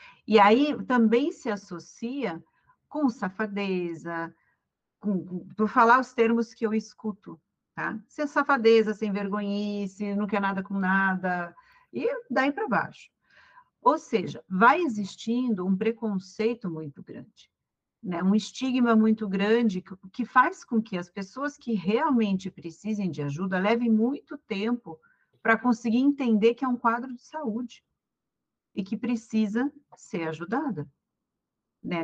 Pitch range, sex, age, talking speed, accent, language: 185-240 Hz, female, 50-69, 140 wpm, Brazilian, Portuguese